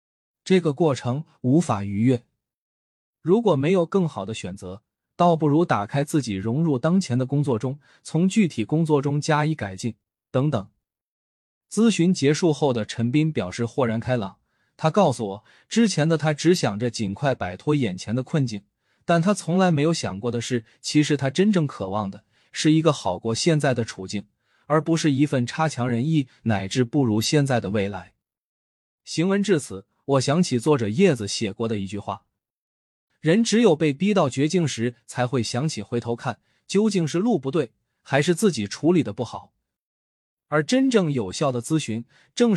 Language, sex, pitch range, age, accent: Chinese, male, 115-160 Hz, 20-39, native